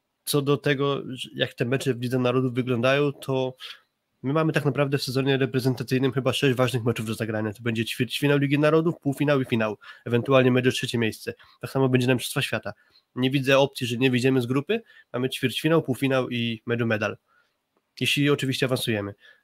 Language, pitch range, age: Polish, 125-140 Hz, 20-39